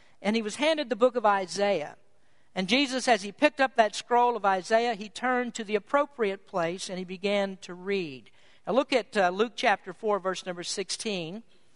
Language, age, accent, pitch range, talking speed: English, 50-69, American, 190-250 Hz, 200 wpm